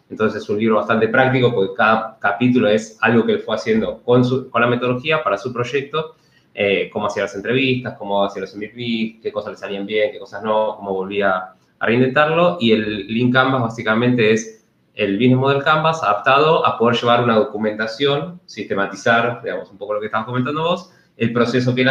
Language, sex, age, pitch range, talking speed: Spanish, male, 20-39, 110-130 Hz, 200 wpm